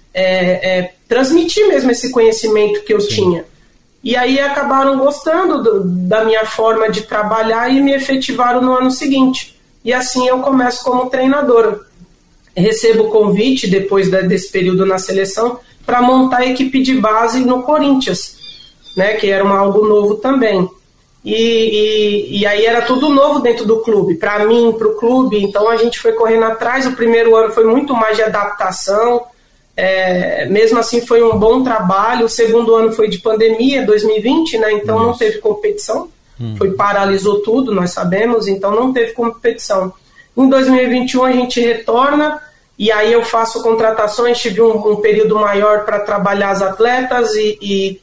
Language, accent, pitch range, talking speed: Portuguese, Brazilian, 205-245 Hz, 165 wpm